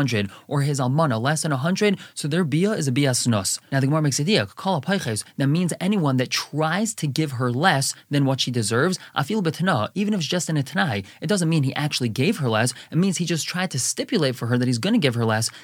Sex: male